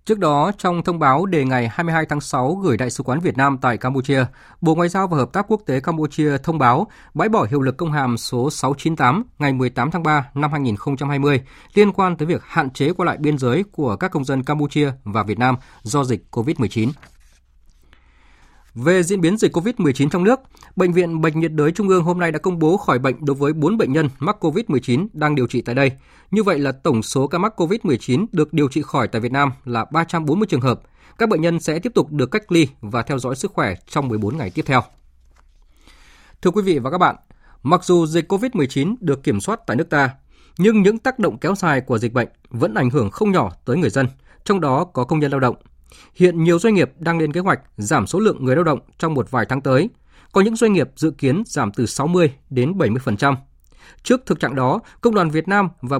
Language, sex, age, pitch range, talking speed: Vietnamese, male, 20-39, 125-170 Hz, 230 wpm